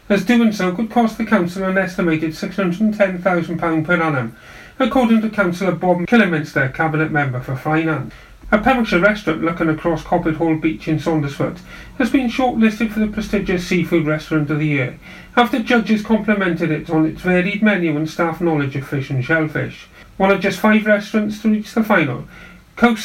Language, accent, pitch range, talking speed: English, British, 160-215 Hz, 175 wpm